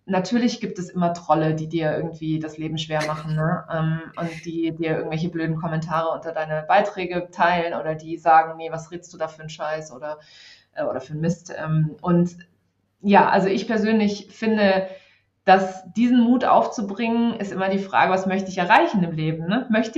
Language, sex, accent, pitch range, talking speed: German, female, German, 160-205 Hz, 175 wpm